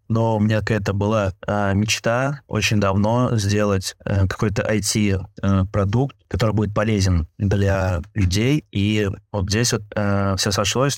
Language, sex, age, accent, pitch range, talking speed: Russian, male, 20-39, native, 100-110 Hz, 120 wpm